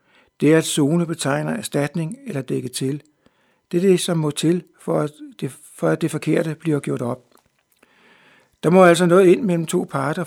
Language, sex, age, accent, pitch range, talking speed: Danish, male, 60-79, native, 145-175 Hz, 195 wpm